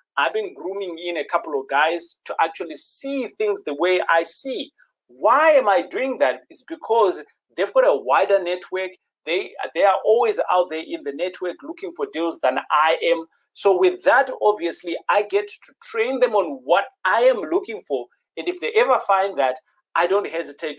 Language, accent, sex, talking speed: English, South African, male, 195 wpm